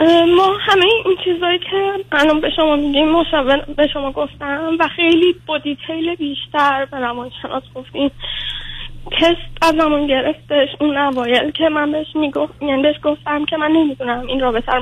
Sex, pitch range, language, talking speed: female, 245-310 Hz, Persian, 160 wpm